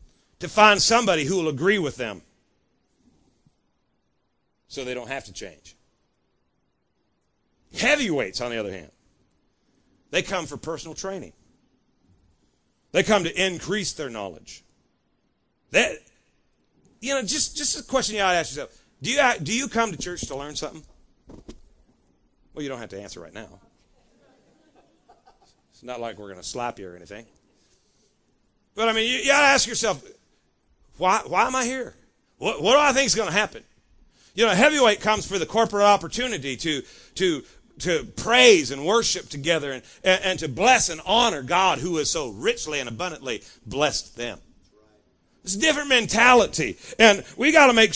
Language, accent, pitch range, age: English, American, 135-225 Hz, 40-59